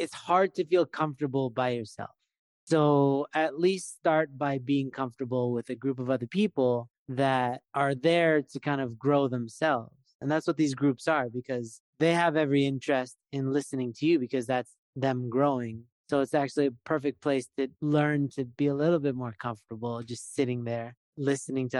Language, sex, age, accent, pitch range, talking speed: English, male, 30-49, American, 130-155 Hz, 185 wpm